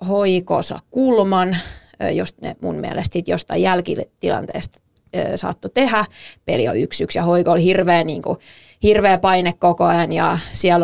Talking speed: 120 wpm